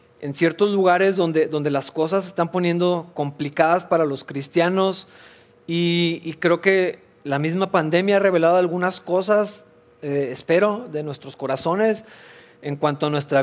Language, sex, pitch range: Spanish, male, 145-175 Hz